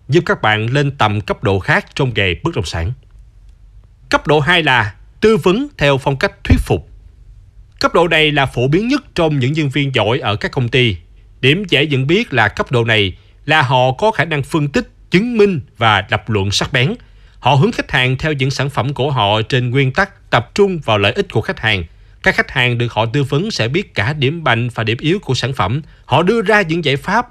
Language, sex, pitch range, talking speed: Vietnamese, male, 110-165 Hz, 235 wpm